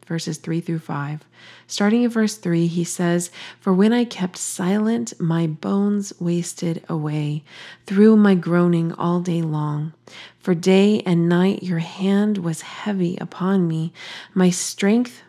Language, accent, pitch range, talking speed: English, American, 160-195 Hz, 145 wpm